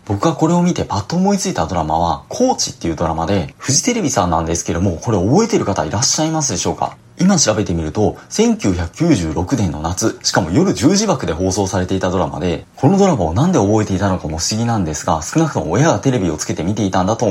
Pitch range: 90-145 Hz